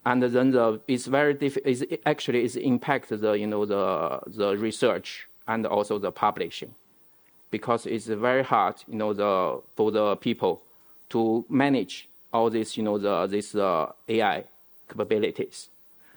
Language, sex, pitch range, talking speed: English, male, 110-125 Hz, 150 wpm